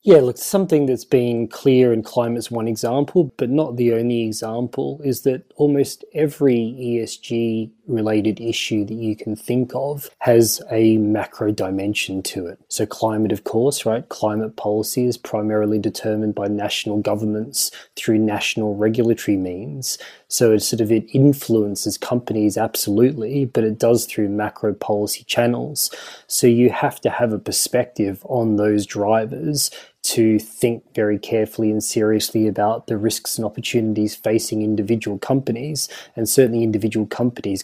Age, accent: 20-39, Australian